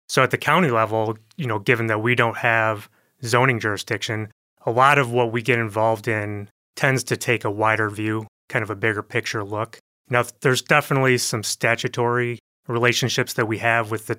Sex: male